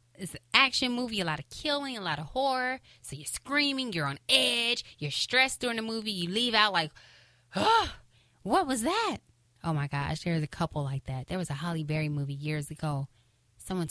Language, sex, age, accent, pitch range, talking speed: English, female, 10-29, American, 150-215 Hz, 205 wpm